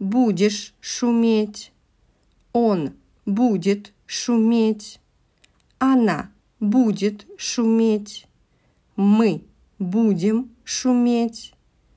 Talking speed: 55 wpm